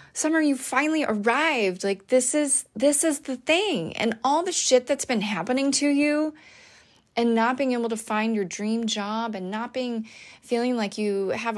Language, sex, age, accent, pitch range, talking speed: English, female, 30-49, American, 190-255 Hz, 185 wpm